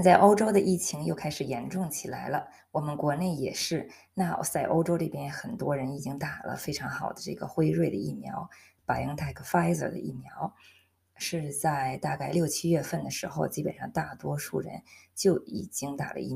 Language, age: Chinese, 20-39